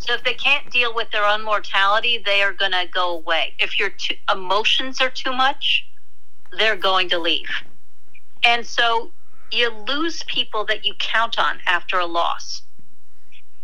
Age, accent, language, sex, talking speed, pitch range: 50-69, American, English, female, 165 wpm, 180-255 Hz